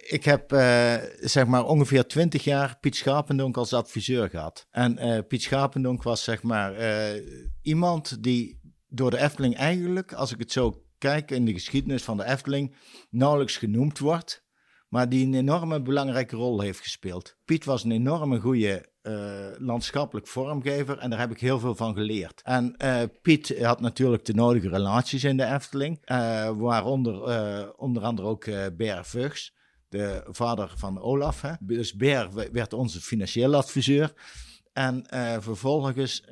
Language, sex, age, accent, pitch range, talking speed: Dutch, male, 50-69, Dutch, 110-135 Hz, 160 wpm